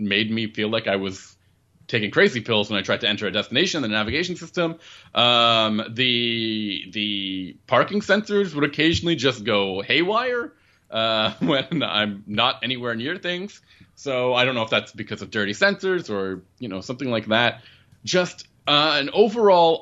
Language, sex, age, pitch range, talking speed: English, male, 30-49, 100-135 Hz, 175 wpm